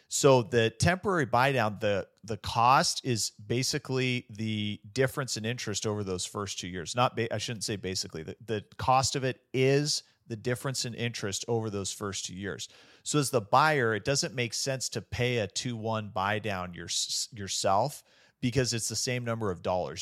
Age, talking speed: 40-59, 185 wpm